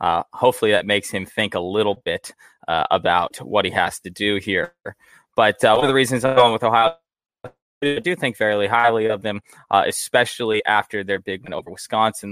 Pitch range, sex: 100-130 Hz, male